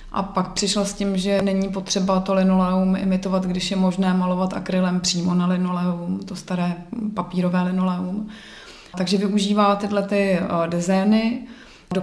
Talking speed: 145 wpm